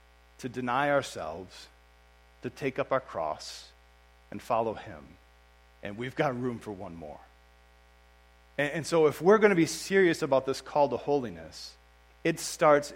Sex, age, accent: male, 40-59, American